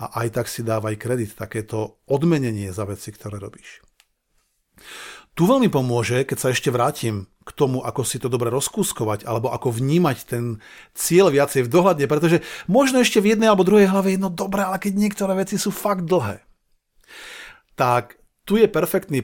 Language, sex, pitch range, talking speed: Slovak, male, 120-185 Hz, 175 wpm